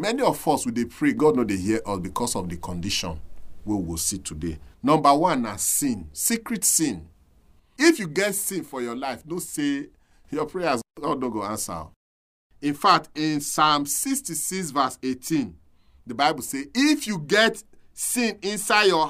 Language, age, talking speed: English, 40-59, 180 wpm